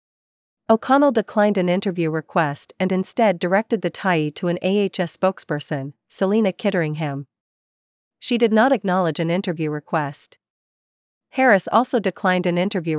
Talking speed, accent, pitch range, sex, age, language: 130 wpm, American, 160-200 Hz, female, 40-59, English